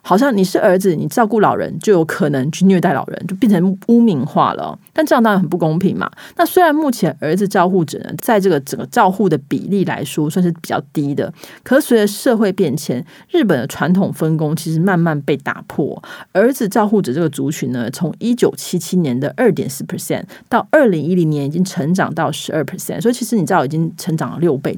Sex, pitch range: female, 160-215 Hz